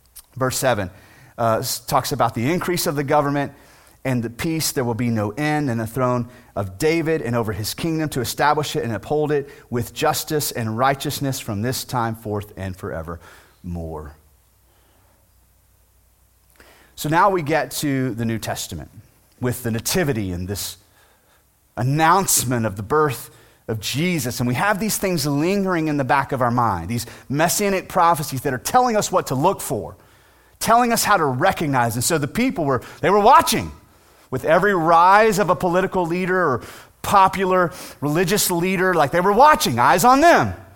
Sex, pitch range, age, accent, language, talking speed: male, 115-185 Hz, 30-49, American, English, 170 wpm